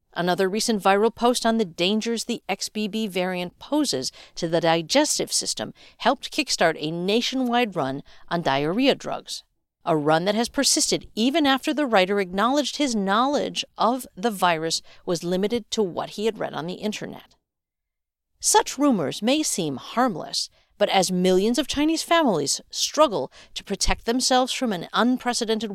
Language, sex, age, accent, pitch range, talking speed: English, female, 50-69, American, 170-255 Hz, 155 wpm